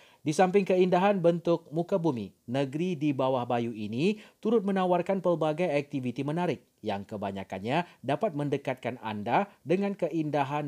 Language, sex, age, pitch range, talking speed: Malay, male, 40-59, 120-165 Hz, 130 wpm